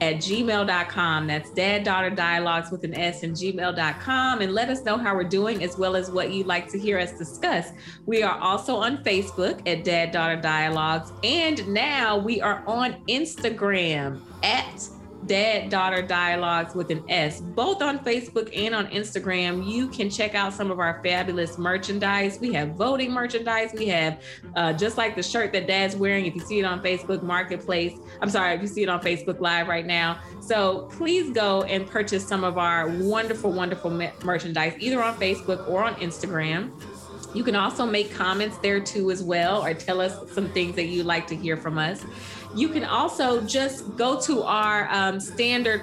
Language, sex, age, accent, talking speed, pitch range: English, female, 20-39, American, 185 wpm, 175-220 Hz